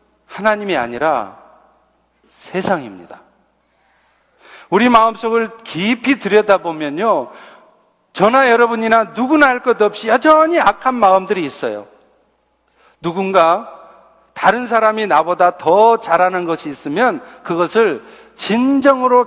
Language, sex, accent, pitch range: Korean, male, native, 180-245 Hz